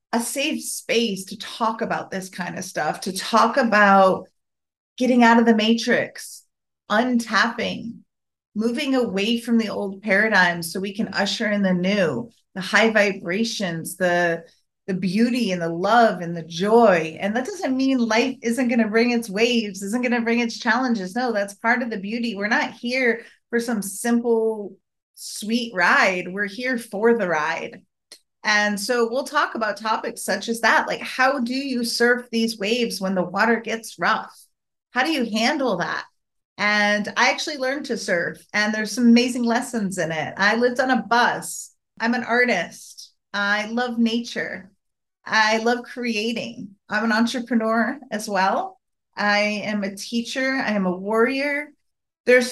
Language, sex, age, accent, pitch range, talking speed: English, female, 30-49, American, 205-245 Hz, 170 wpm